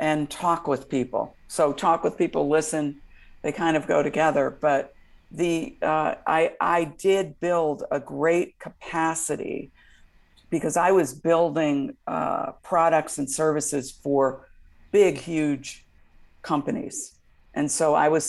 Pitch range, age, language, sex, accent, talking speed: 140-165 Hz, 50-69, English, female, American, 130 wpm